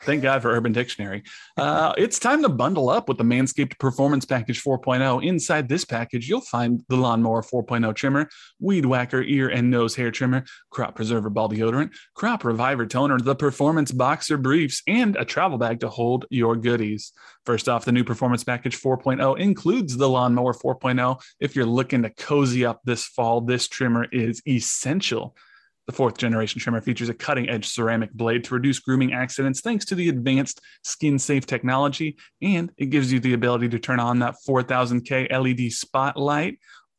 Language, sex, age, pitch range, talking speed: English, male, 30-49, 120-145 Hz, 170 wpm